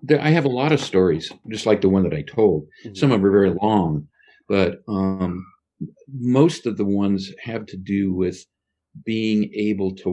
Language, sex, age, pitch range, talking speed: English, male, 50-69, 80-95 Hz, 190 wpm